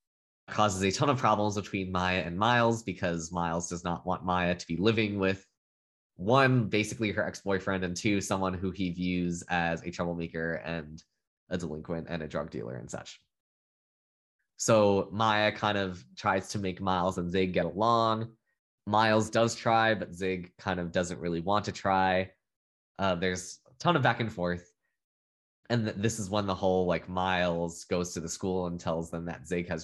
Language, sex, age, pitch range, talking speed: English, male, 20-39, 85-105 Hz, 185 wpm